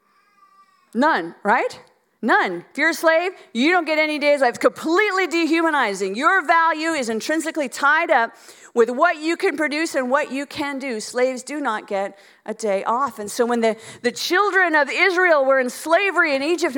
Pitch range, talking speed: 210-330 Hz, 180 wpm